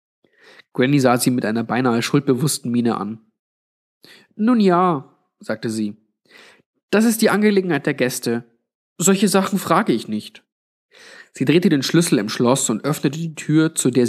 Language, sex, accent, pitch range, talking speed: German, male, German, 115-160 Hz, 155 wpm